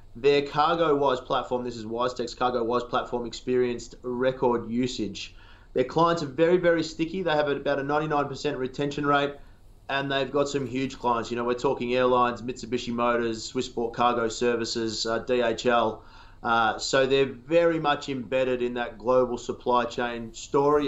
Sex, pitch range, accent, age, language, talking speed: male, 125-145 Hz, Australian, 30-49, English, 155 wpm